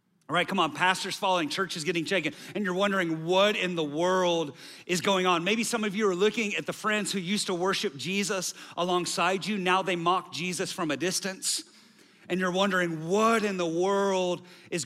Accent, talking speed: American, 205 wpm